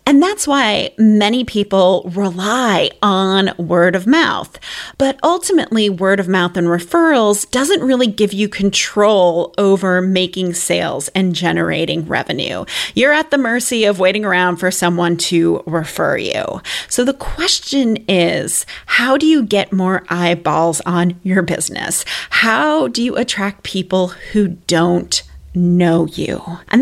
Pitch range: 180-250 Hz